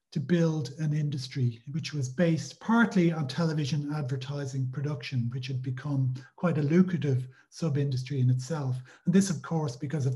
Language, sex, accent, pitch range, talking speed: English, male, Irish, 145-180 Hz, 160 wpm